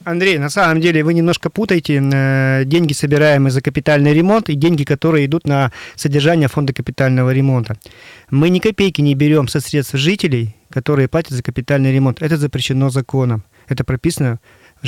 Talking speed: 160 wpm